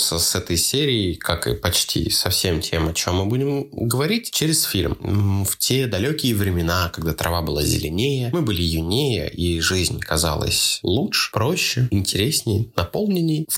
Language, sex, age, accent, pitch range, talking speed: Russian, male, 20-39, native, 90-130 Hz, 155 wpm